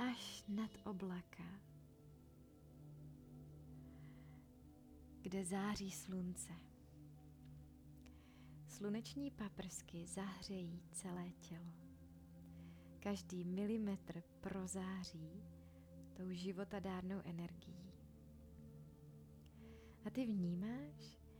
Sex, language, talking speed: female, Czech, 55 wpm